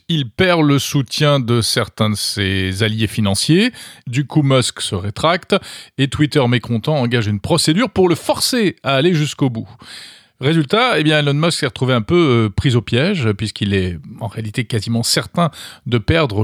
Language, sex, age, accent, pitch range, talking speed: French, male, 40-59, French, 115-155 Hz, 175 wpm